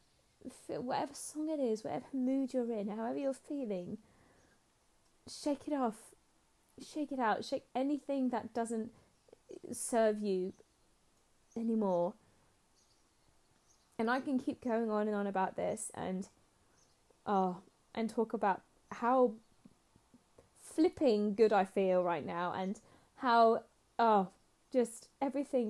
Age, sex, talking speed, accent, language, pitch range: 10-29, female, 120 wpm, British, English, 195-250 Hz